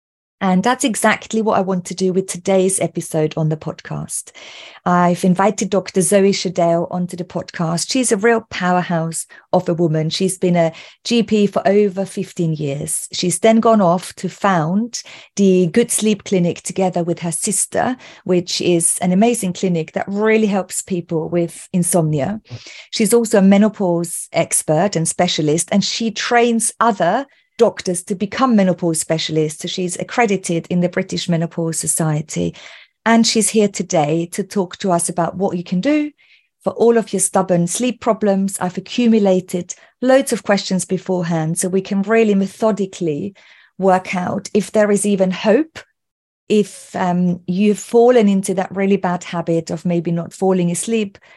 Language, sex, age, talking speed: English, female, 40-59, 160 wpm